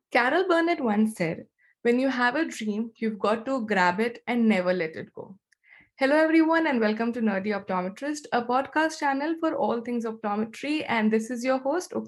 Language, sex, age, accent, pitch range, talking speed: English, female, 20-39, Indian, 205-265 Hz, 190 wpm